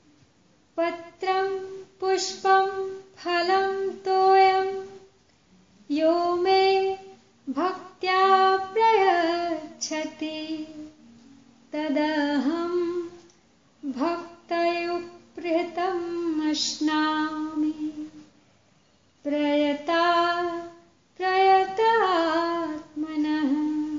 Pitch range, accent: 250-340 Hz, native